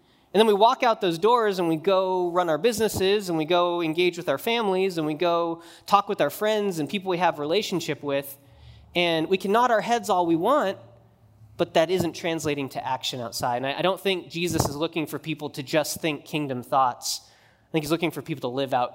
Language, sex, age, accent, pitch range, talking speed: English, male, 20-39, American, 155-205 Hz, 230 wpm